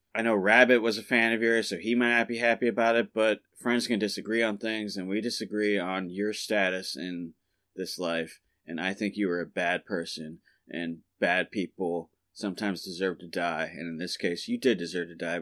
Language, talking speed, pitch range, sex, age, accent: English, 215 wpm, 90-110 Hz, male, 30-49, American